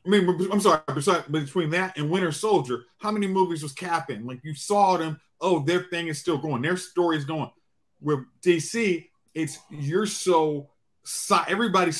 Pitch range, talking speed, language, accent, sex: 150-185 Hz, 170 wpm, English, American, male